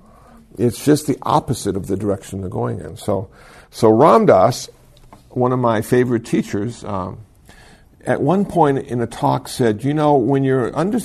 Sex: male